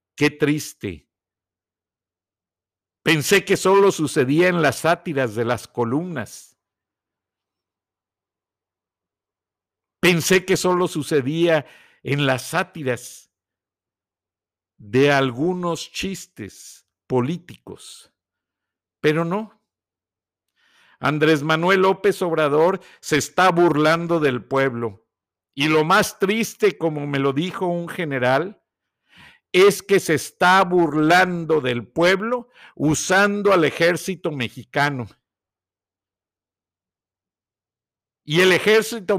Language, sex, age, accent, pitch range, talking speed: Spanish, male, 50-69, Mexican, 110-185 Hz, 90 wpm